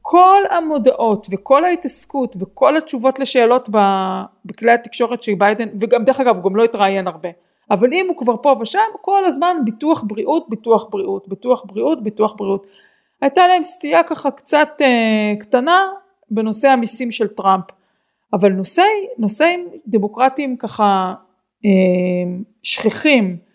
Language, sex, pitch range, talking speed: Hebrew, female, 200-280 Hz, 135 wpm